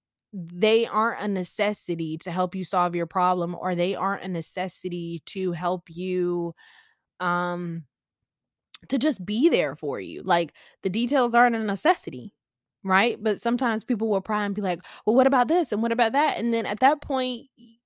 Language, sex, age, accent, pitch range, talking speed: English, female, 20-39, American, 180-250 Hz, 180 wpm